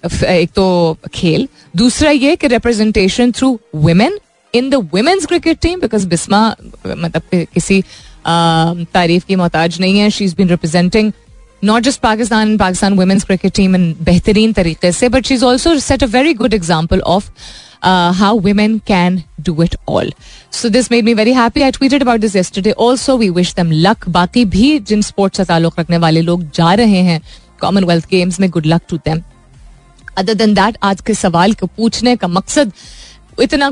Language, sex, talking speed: Hindi, female, 155 wpm